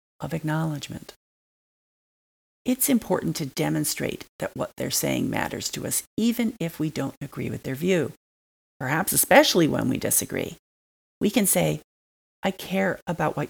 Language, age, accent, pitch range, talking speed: English, 40-59, American, 120-190 Hz, 145 wpm